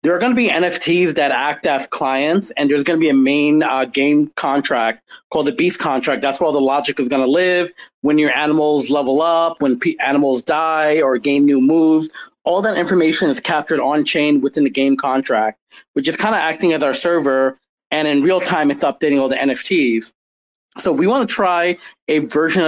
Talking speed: 200 wpm